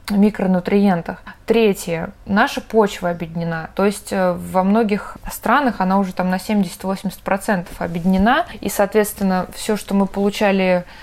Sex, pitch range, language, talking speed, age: female, 185-220 Hz, Russian, 125 wpm, 20-39